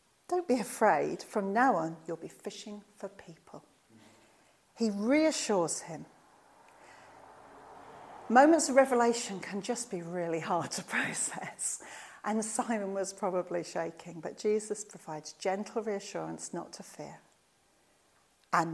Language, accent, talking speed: English, British, 120 wpm